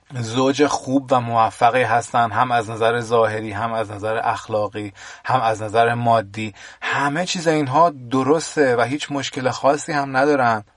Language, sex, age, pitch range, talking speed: Persian, male, 30-49, 110-130 Hz, 150 wpm